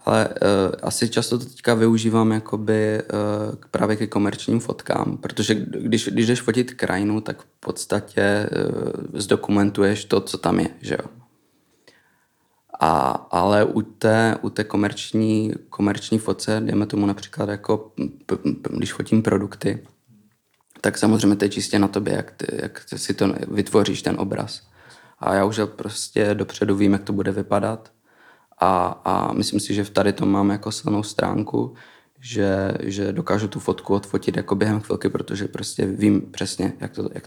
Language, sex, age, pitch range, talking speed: Czech, male, 20-39, 100-110 Hz, 165 wpm